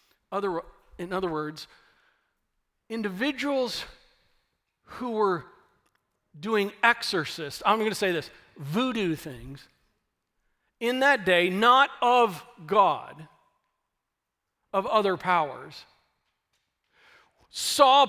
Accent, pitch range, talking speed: American, 195-250 Hz, 85 wpm